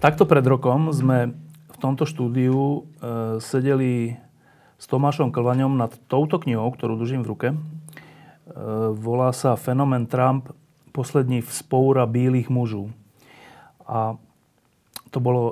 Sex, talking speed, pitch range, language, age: male, 110 wpm, 120-150 Hz, Slovak, 40-59